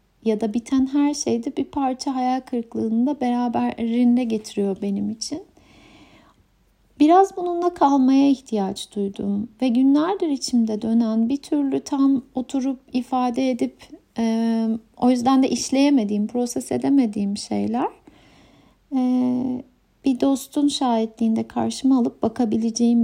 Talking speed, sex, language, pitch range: 115 wpm, female, Turkish, 225-275 Hz